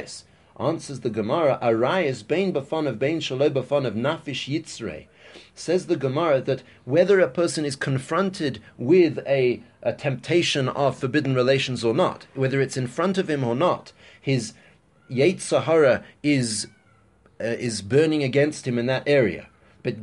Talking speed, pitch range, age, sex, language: 150 wpm, 120-160 Hz, 30-49, male, English